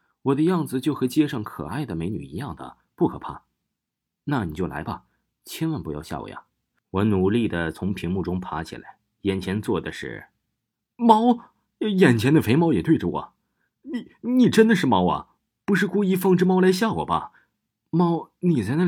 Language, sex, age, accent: Chinese, male, 30-49, native